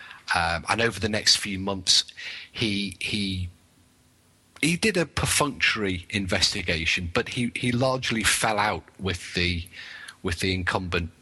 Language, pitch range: English, 85-105 Hz